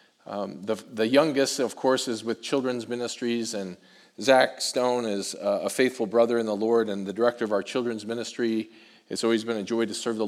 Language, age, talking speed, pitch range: English, 40-59, 210 wpm, 105-120 Hz